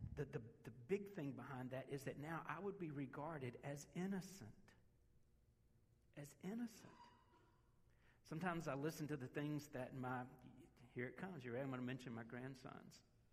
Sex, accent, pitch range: male, American, 135-190 Hz